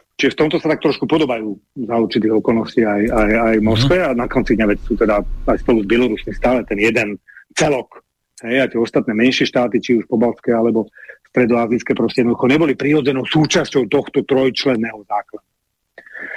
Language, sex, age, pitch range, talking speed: English, male, 40-59, 120-160 Hz, 165 wpm